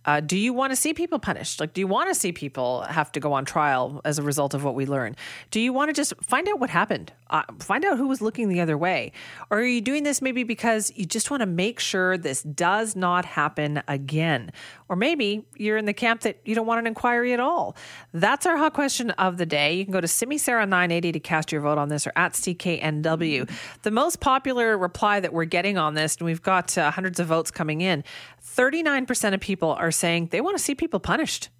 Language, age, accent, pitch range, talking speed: English, 40-59, American, 155-225 Hz, 240 wpm